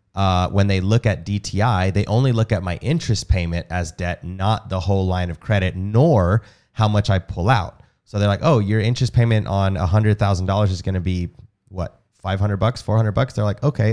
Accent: American